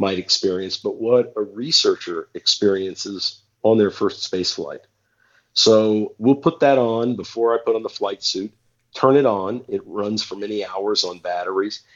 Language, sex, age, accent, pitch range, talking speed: English, male, 50-69, American, 105-170 Hz, 170 wpm